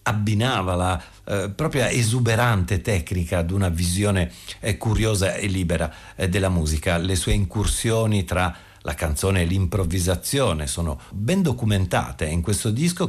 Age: 50-69